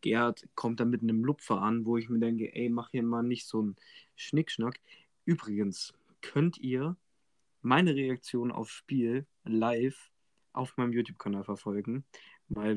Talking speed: 150 wpm